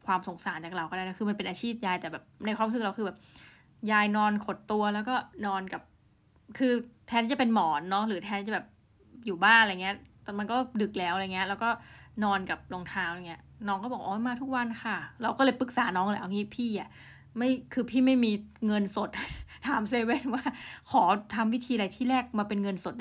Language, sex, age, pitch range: Thai, female, 20-39, 195-240 Hz